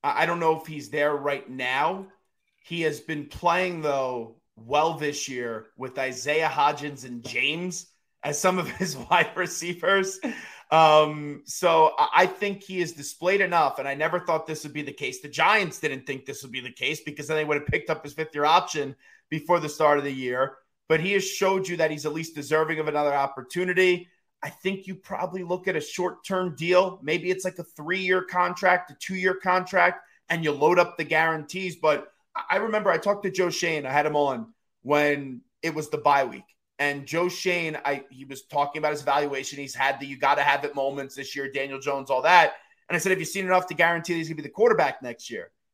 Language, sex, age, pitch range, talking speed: English, male, 30-49, 145-180 Hz, 220 wpm